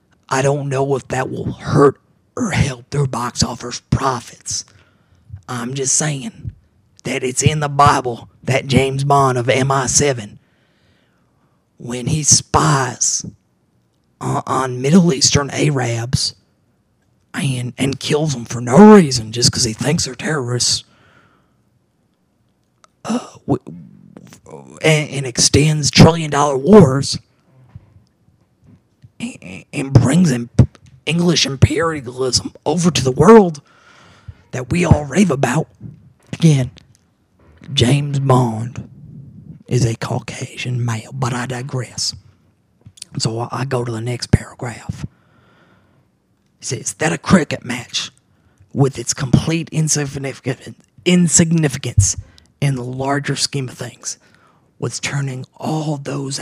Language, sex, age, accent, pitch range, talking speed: English, male, 30-49, American, 120-145 Hz, 110 wpm